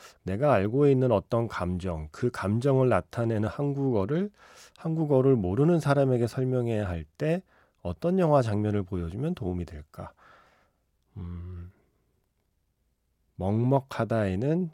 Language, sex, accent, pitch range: Korean, male, native, 90-130 Hz